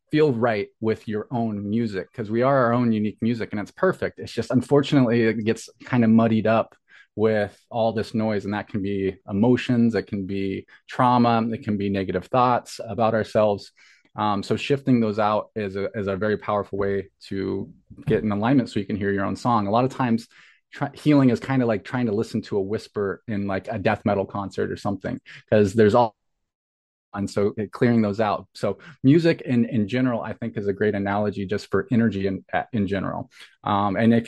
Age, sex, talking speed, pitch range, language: 20-39, male, 210 wpm, 100-120 Hz, English